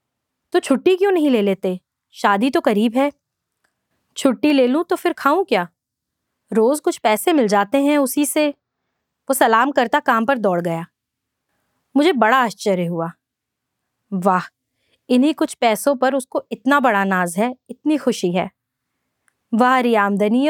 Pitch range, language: 210-265 Hz, Hindi